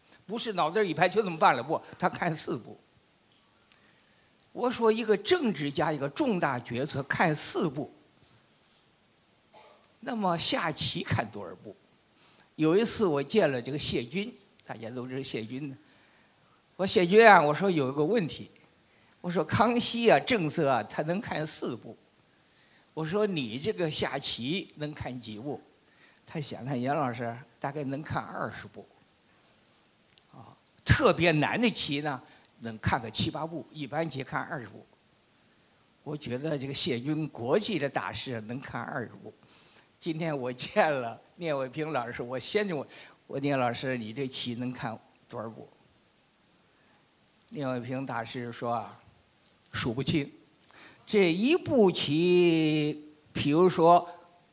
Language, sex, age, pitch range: Chinese, male, 50-69, 130-175 Hz